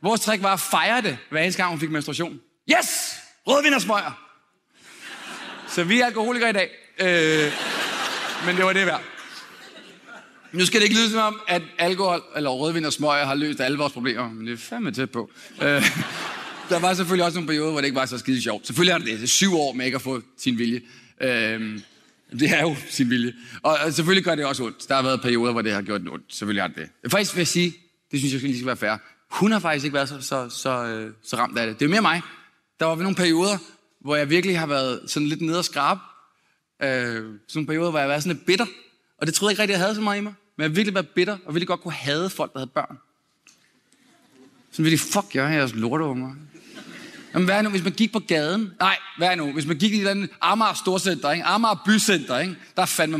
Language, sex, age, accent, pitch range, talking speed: Danish, male, 30-49, native, 135-190 Hz, 235 wpm